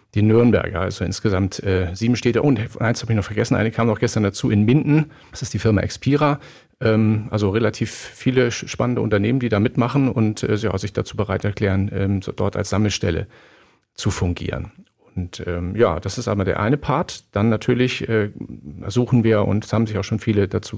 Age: 40-59